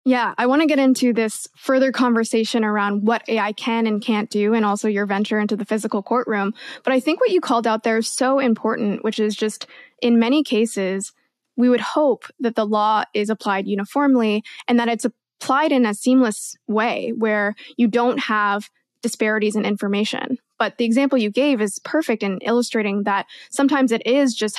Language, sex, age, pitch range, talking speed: English, female, 20-39, 210-250 Hz, 195 wpm